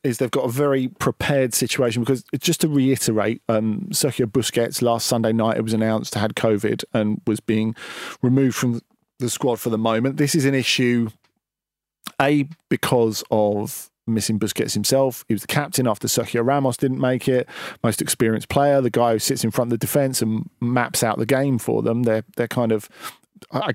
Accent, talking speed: British, 190 wpm